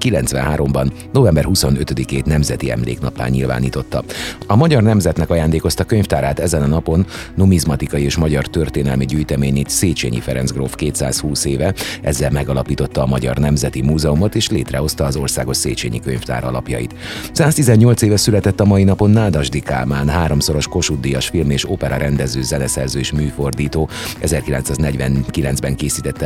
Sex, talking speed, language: male, 130 wpm, Hungarian